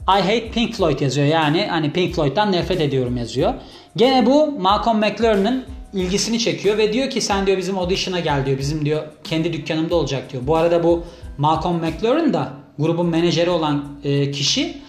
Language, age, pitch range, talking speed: Turkish, 30-49, 155-215 Hz, 175 wpm